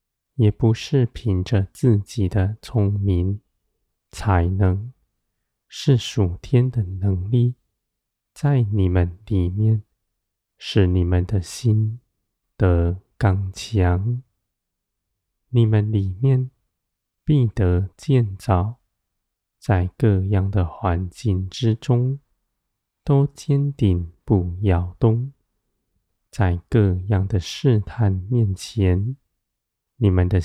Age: 20-39